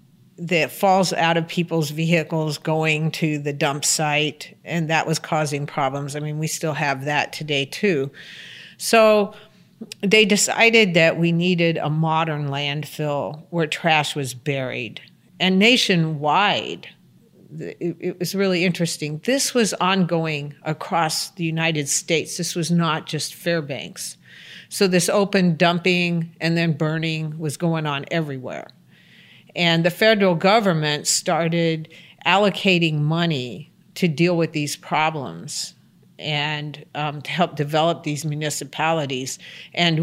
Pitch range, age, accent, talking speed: 150-175 Hz, 50-69, American, 130 wpm